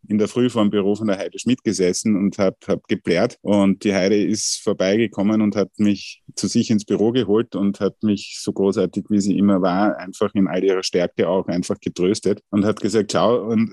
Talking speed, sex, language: 215 wpm, male, German